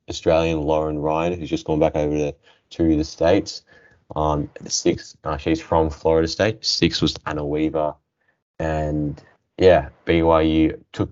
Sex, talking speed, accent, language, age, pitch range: male, 150 wpm, Australian, English, 10-29, 75-85 Hz